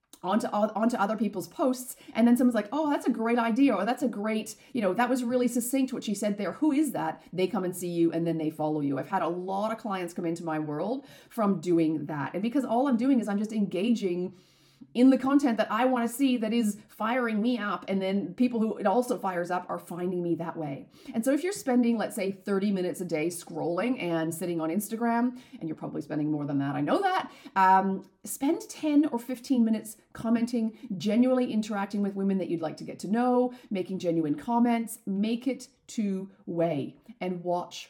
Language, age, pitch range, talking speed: English, 30-49, 175-245 Hz, 225 wpm